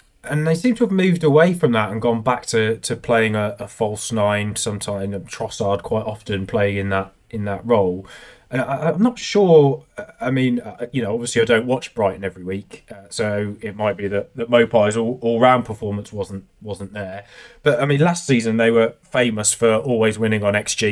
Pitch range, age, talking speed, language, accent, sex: 100-120 Hz, 20-39, 210 wpm, English, British, male